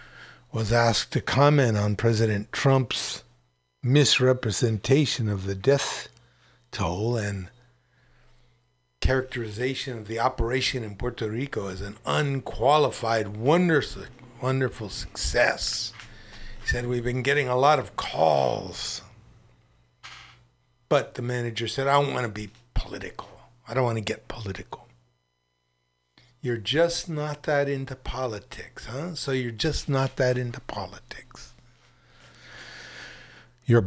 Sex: male